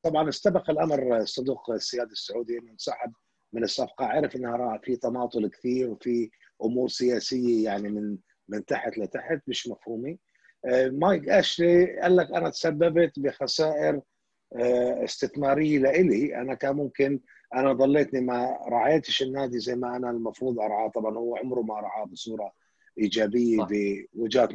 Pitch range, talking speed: 120-155 Hz, 140 wpm